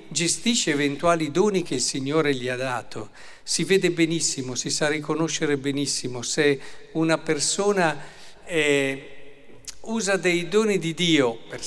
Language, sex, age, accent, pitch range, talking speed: Italian, male, 50-69, native, 135-170 Hz, 135 wpm